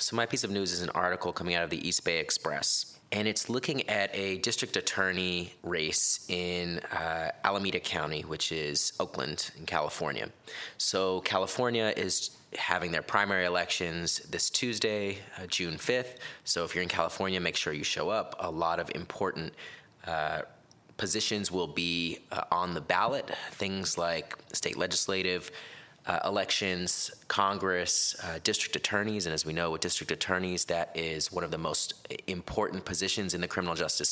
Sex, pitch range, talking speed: male, 85-100 Hz, 165 wpm